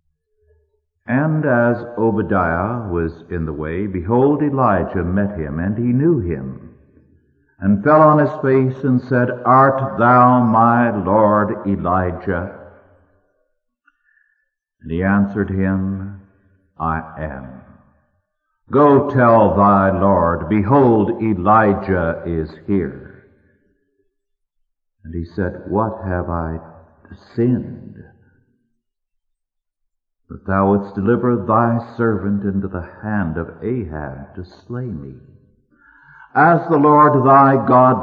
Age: 60-79